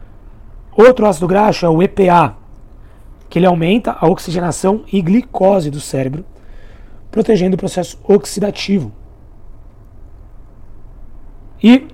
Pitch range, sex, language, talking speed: 115-190 Hz, male, Portuguese, 100 wpm